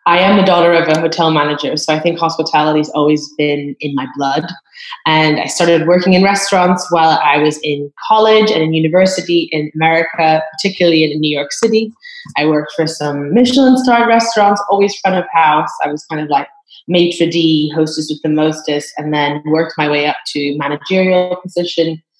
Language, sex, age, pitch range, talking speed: English, female, 20-39, 150-175 Hz, 185 wpm